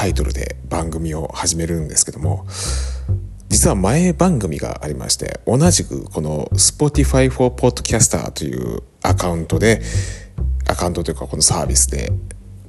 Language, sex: Japanese, male